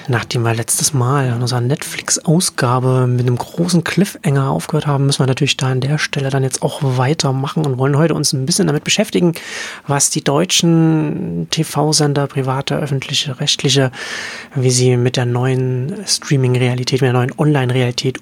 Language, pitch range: German, 130-155 Hz